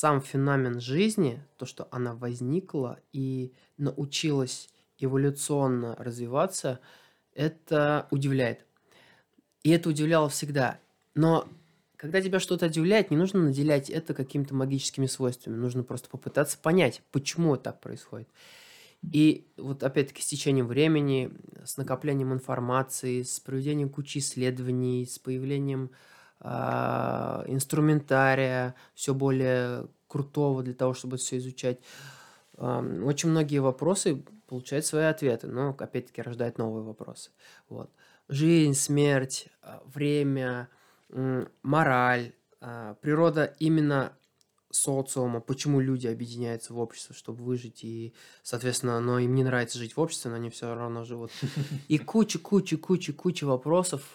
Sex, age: male, 20-39